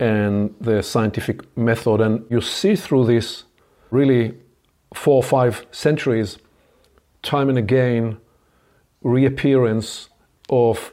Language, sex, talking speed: English, male, 105 wpm